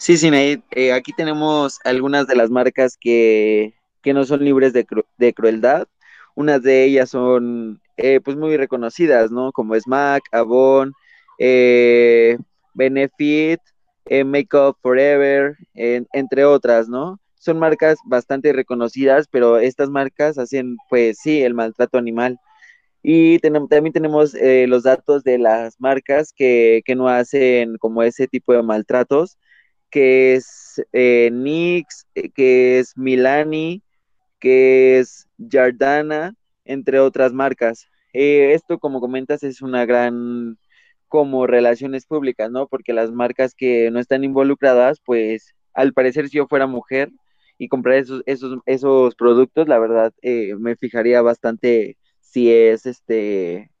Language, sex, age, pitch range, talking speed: Spanish, male, 20-39, 120-140 Hz, 140 wpm